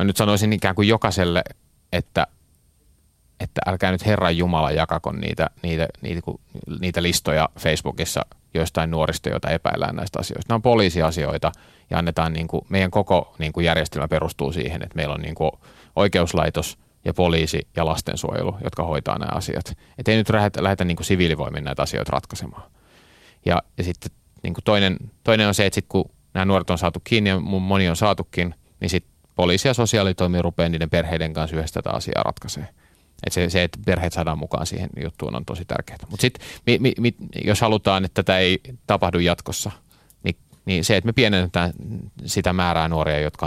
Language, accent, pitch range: Finnish, native, 80-95 Hz